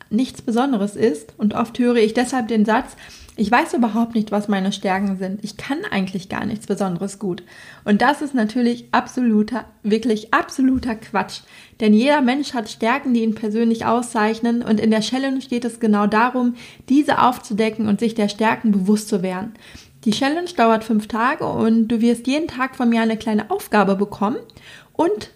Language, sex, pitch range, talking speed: German, female, 210-245 Hz, 180 wpm